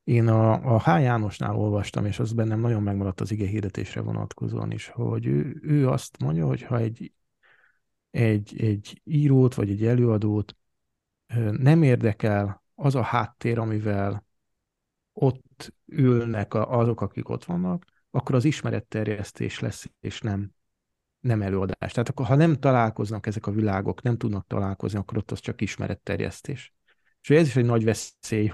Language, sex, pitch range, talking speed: Hungarian, male, 105-130 Hz, 150 wpm